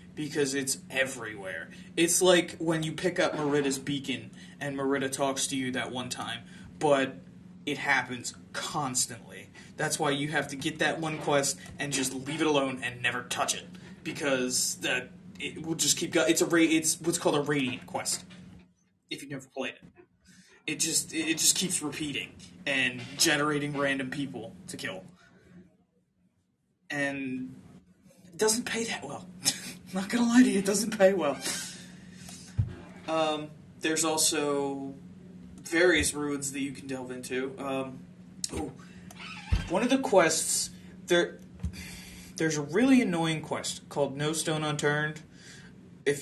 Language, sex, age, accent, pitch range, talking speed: English, male, 20-39, American, 140-170 Hz, 150 wpm